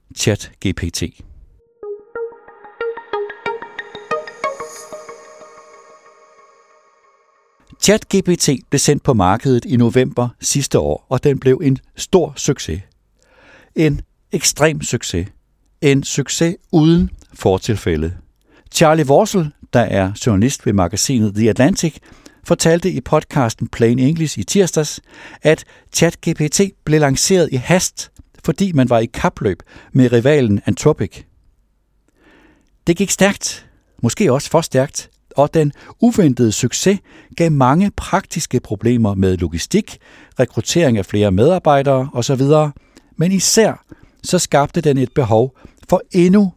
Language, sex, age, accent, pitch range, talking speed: Danish, male, 60-79, native, 115-165 Hz, 110 wpm